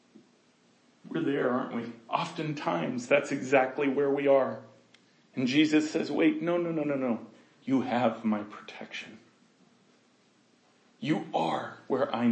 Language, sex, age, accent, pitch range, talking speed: English, male, 40-59, American, 150-215 Hz, 130 wpm